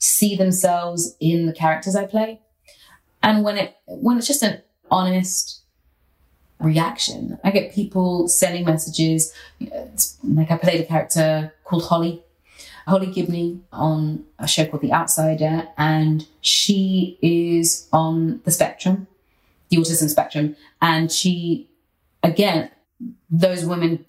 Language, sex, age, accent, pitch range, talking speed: English, female, 30-49, British, 155-185 Hz, 125 wpm